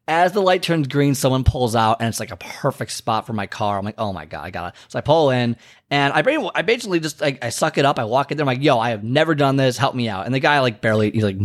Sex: male